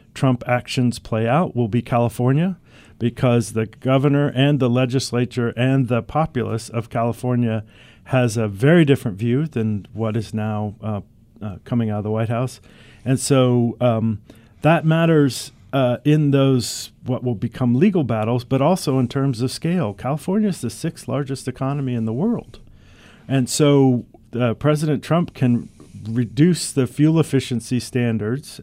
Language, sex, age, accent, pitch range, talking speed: English, male, 50-69, American, 115-140 Hz, 155 wpm